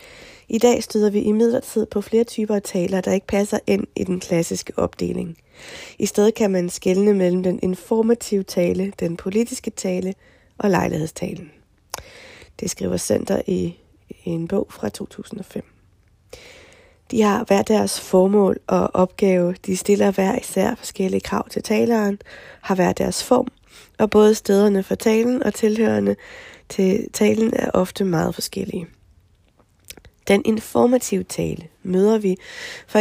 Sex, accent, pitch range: female, native, 180-220 Hz